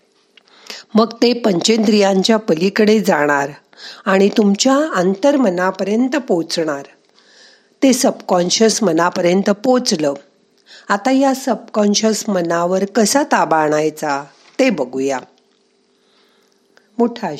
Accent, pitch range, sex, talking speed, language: native, 175-230 Hz, female, 60 wpm, Marathi